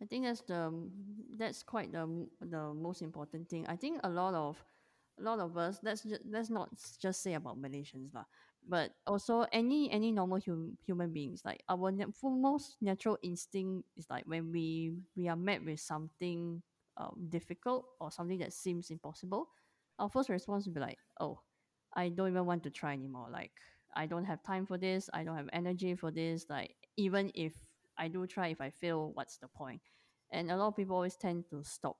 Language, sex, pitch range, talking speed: English, female, 165-205 Hz, 205 wpm